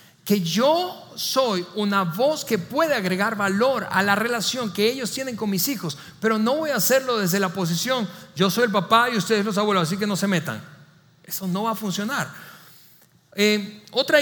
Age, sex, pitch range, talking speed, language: 40-59, male, 165-210 Hz, 195 wpm, Spanish